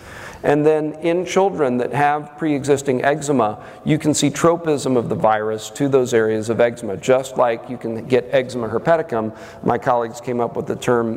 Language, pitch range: English, 115-145 Hz